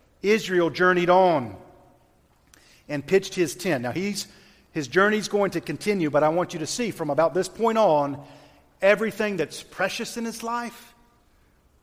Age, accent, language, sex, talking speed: 40-59, American, English, male, 150 wpm